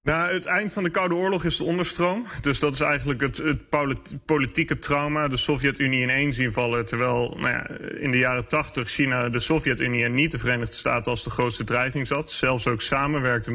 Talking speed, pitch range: 195 wpm, 120-140 Hz